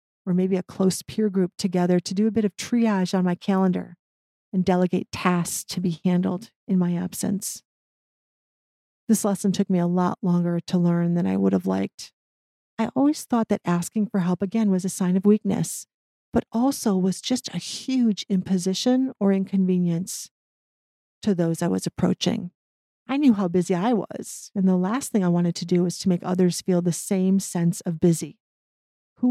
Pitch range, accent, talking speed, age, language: 175-210 Hz, American, 185 wpm, 40-59, English